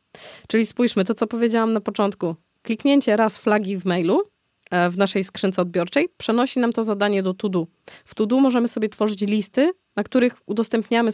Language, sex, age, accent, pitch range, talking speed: Polish, female, 20-39, native, 185-230 Hz, 175 wpm